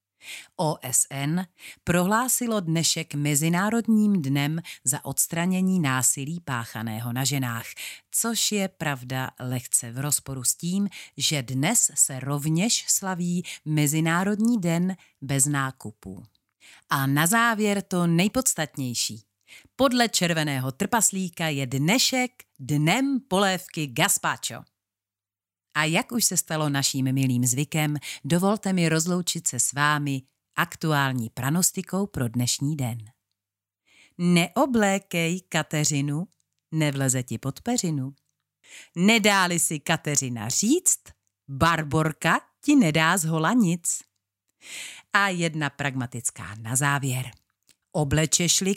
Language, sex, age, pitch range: Czech, female, 40-59, 135-185 Hz